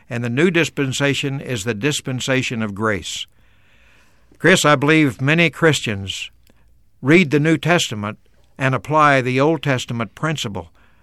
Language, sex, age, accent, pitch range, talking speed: English, male, 60-79, American, 110-145 Hz, 130 wpm